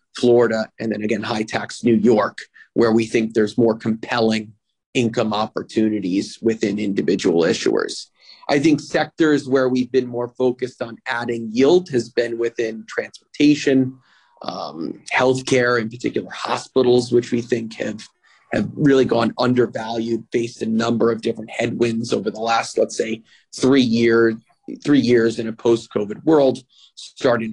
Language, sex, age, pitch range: English, male, 30-49, 115-130 Hz